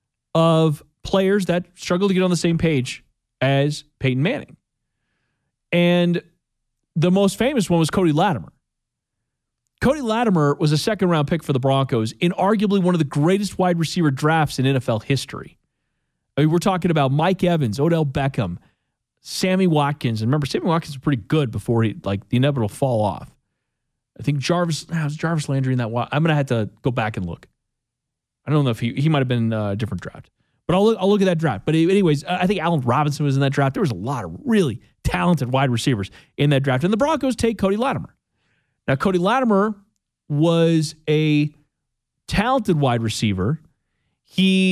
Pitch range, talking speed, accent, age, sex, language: 135-180 Hz, 190 wpm, American, 30-49, male, English